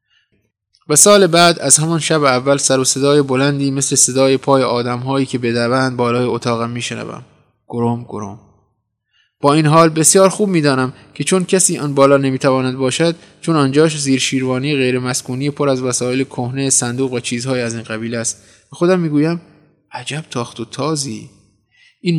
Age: 20-39